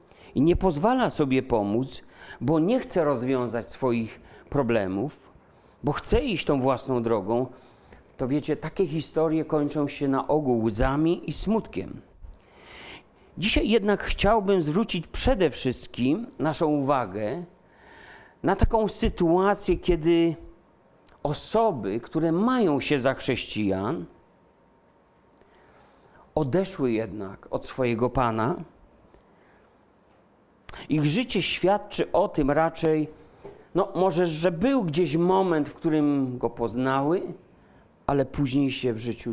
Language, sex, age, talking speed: Polish, male, 40-59, 110 wpm